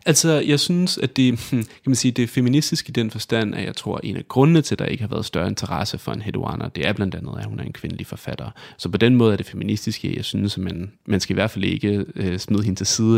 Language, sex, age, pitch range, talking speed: Danish, male, 30-49, 100-125 Hz, 270 wpm